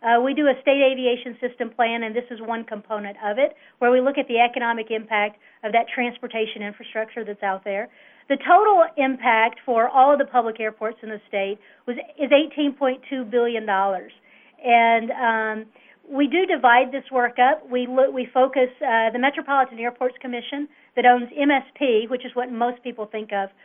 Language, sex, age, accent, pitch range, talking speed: English, female, 50-69, American, 215-265 Hz, 180 wpm